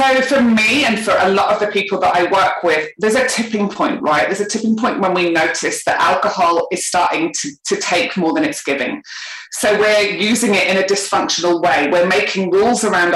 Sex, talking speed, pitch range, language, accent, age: female, 225 wpm, 185-235 Hz, English, British, 30-49